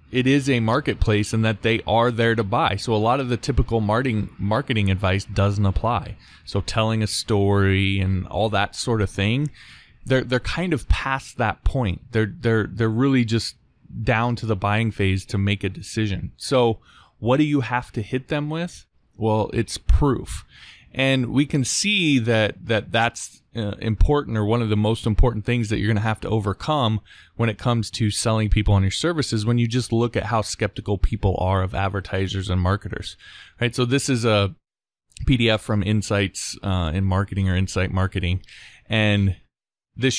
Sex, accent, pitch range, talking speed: male, American, 95-120 Hz, 185 wpm